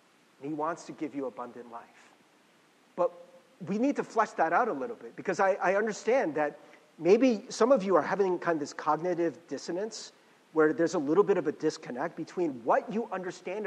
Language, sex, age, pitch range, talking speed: English, male, 40-59, 165-240 Hz, 200 wpm